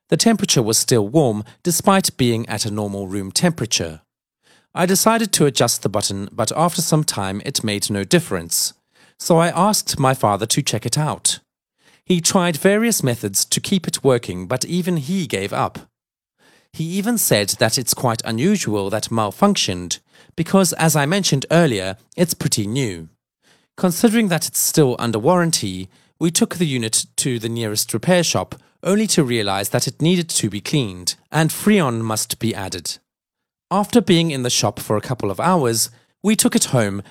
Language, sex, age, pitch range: Chinese, male, 40-59, 110-175 Hz